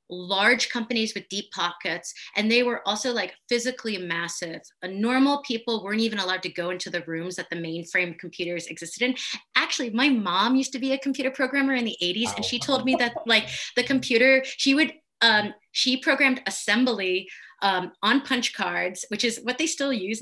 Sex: female